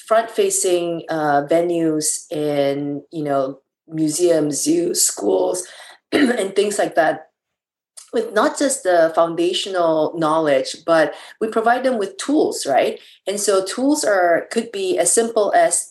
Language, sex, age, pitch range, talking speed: English, female, 30-49, 160-220 Hz, 130 wpm